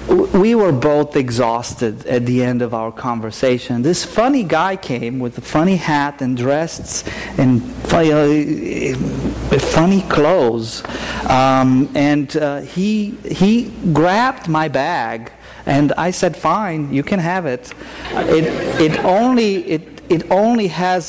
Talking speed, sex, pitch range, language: 135 wpm, male, 130-175 Hz, English